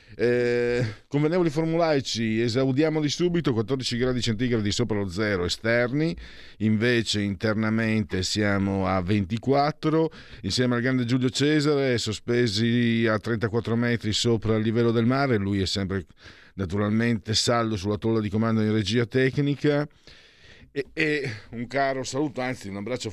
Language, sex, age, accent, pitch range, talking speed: Italian, male, 50-69, native, 95-125 Hz, 135 wpm